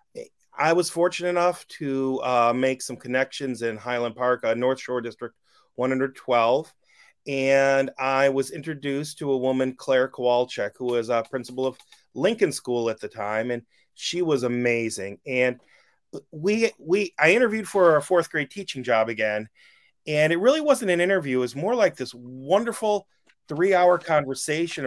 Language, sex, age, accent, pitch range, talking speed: English, male, 30-49, American, 125-165 Hz, 160 wpm